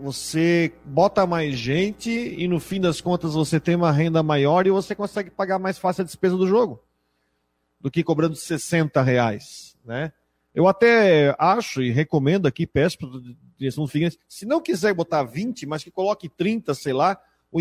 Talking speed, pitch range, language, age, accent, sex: 185 wpm, 160-205 Hz, Portuguese, 40-59, Brazilian, male